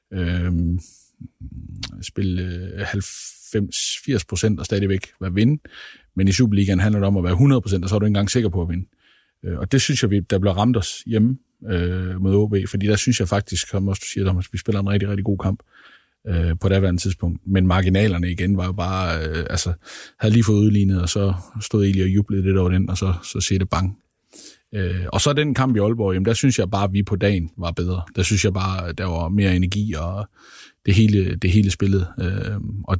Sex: male